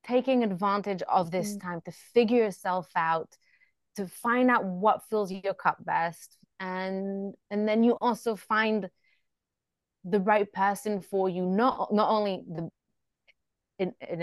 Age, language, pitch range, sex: 20-39, English, 175-215 Hz, female